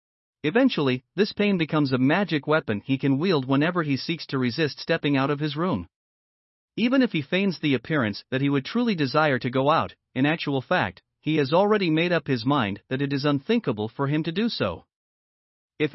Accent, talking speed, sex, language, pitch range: American, 205 wpm, male, English, 130-175 Hz